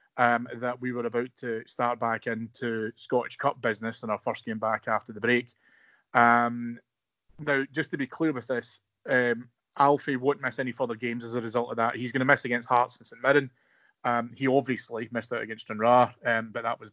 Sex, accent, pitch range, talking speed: male, British, 115-135 Hz, 215 wpm